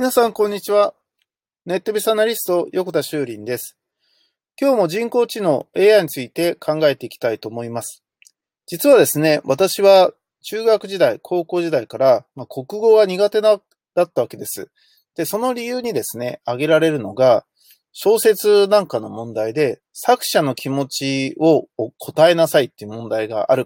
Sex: male